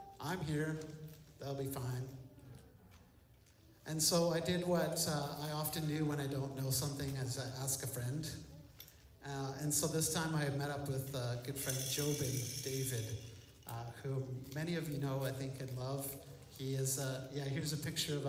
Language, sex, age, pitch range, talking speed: English, male, 50-69, 130-155 Hz, 185 wpm